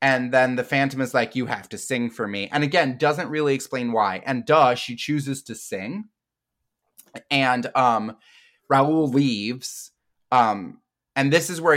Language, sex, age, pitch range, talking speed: English, male, 20-39, 120-155 Hz, 170 wpm